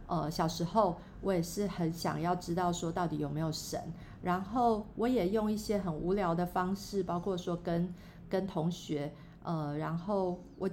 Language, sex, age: Chinese, female, 50-69